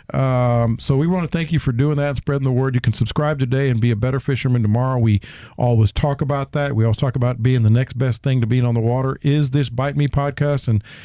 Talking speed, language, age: 260 wpm, English, 50-69